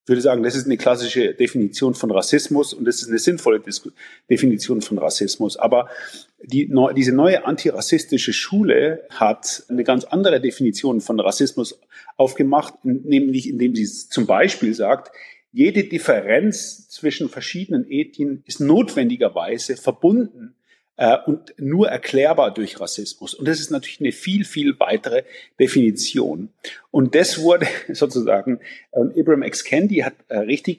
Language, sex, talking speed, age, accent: German, male, 135 wpm, 40-59, German